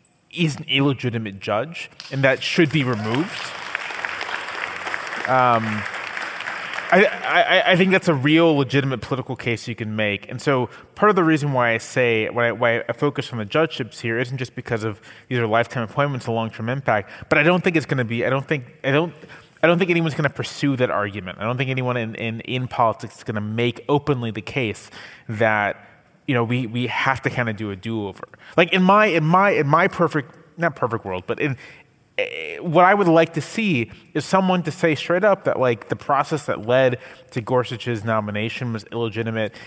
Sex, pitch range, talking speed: male, 115-150 Hz, 210 wpm